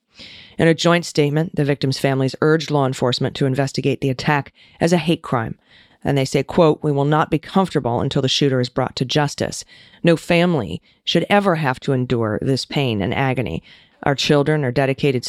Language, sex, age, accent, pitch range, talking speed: English, female, 40-59, American, 130-160 Hz, 190 wpm